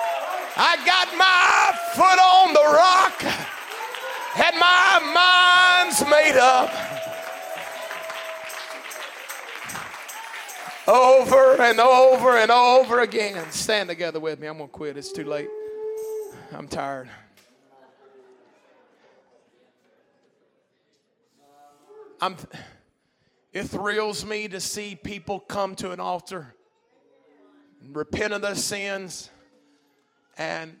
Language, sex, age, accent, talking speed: English, male, 40-59, American, 95 wpm